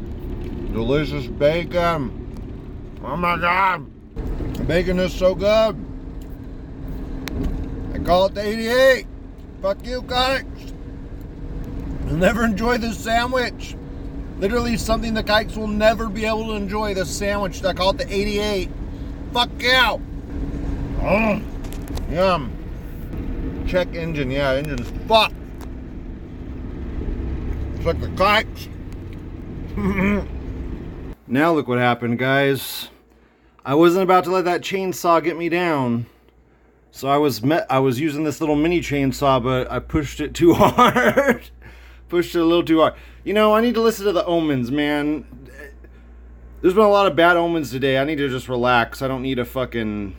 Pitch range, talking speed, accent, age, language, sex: 115-190 Hz, 140 wpm, American, 50-69, English, male